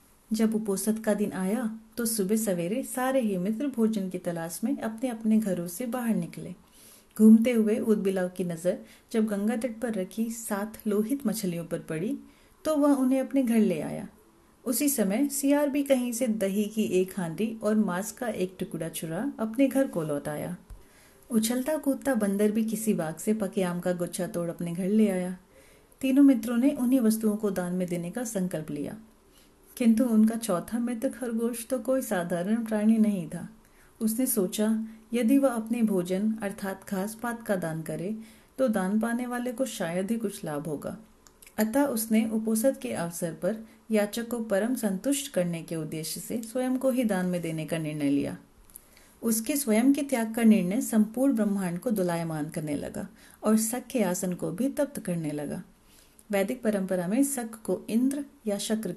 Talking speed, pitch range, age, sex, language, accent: 160 wpm, 185-245 Hz, 40-59, female, Hindi, native